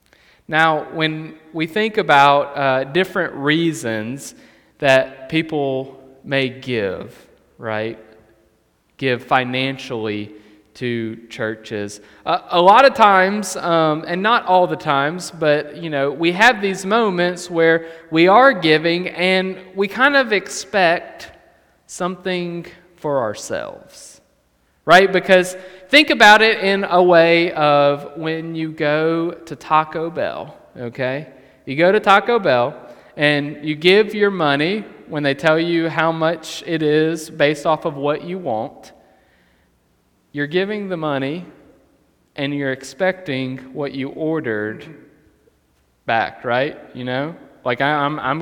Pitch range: 130-175 Hz